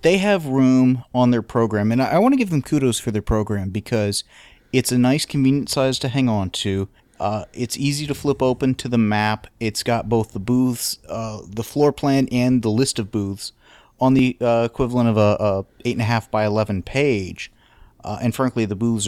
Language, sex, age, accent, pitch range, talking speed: English, male, 30-49, American, 105-125 Hz, 215 wpm